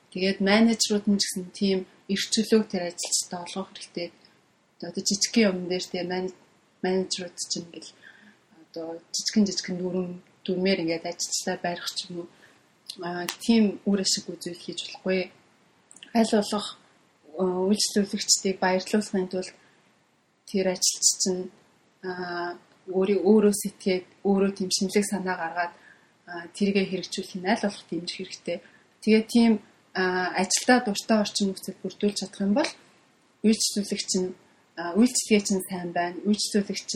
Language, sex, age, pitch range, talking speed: English, female, 30-49, 180-205 Hz, 85 wpm